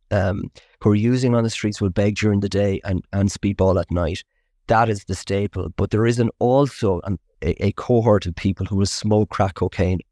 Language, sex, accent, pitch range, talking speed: English, male, Irish, 95-110 Hz, 215 wpm